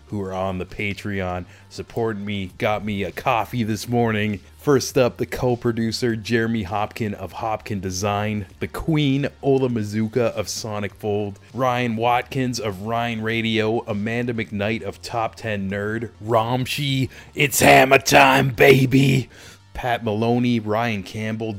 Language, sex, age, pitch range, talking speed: English, male, 30-49, 100-125 Hz, 135 wpm